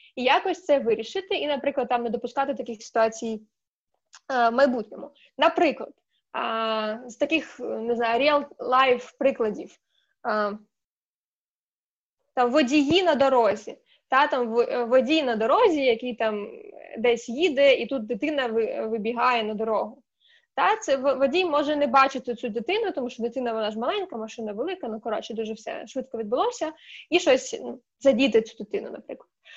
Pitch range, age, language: 240-320 Hz, 20-39, Ukrainian